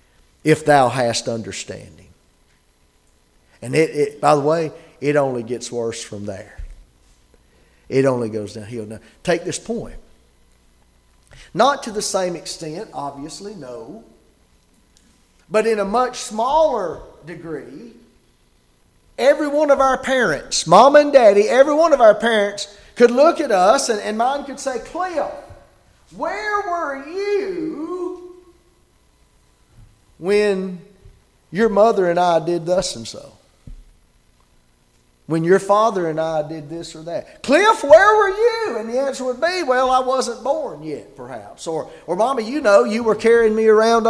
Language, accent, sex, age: English, American, male, 40-59